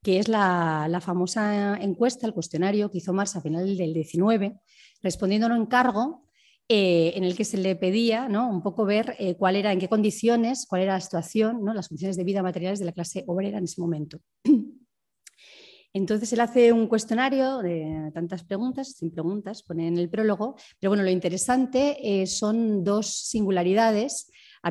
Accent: Spanish